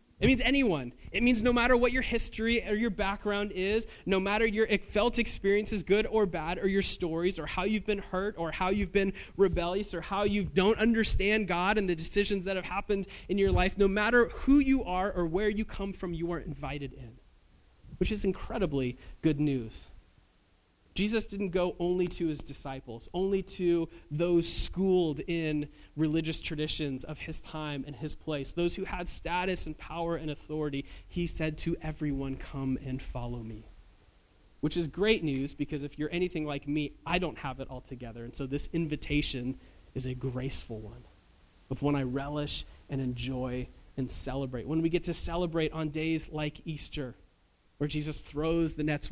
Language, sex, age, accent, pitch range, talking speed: English, male, 30-49, American, 140-195 Hz, 185 wpm